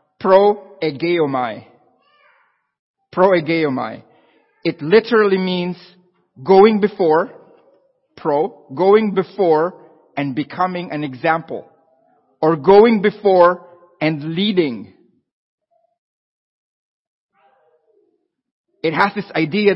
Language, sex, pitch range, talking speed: English, male, 155-205 Hz, 70 wpm